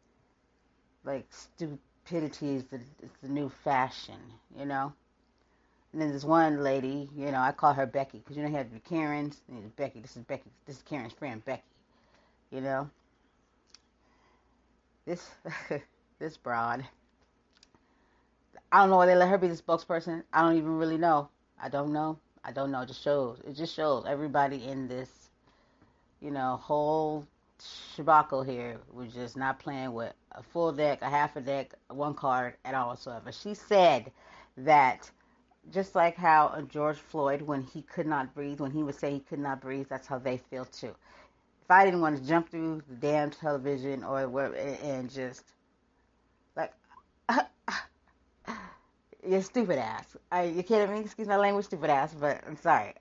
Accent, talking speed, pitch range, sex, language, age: American, 170 wpm, 135-160 Hz, female, English, 30-49